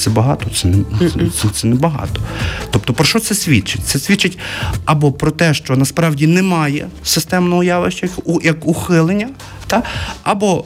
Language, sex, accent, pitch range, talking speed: Ukrainian, male, native, 110-160 Hz, 145 wpm